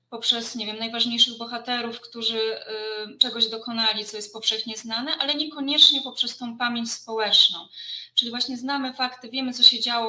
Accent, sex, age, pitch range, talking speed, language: native, female, 20-39, 215-255 Hz, 160 wpm, Polish